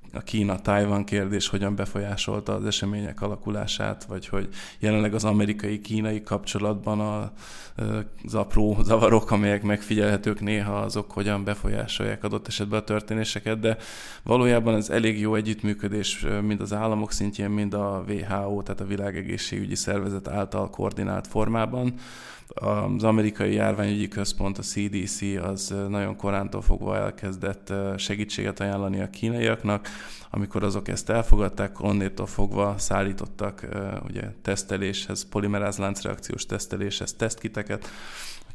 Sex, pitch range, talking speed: male, 95-110 Hz, 115 wpm